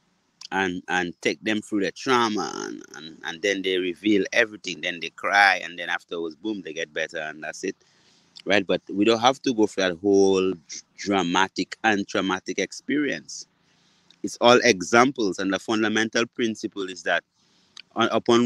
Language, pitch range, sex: English, 100-130 Hz, male